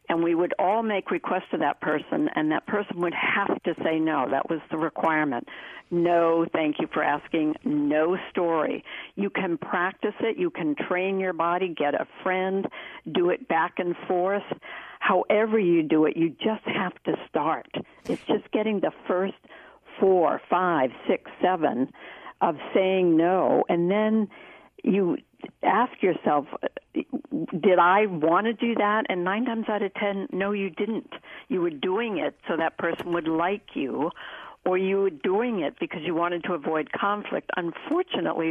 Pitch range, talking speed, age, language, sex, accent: 165-210 Hz, 170 wpm, 60-79, English, female, American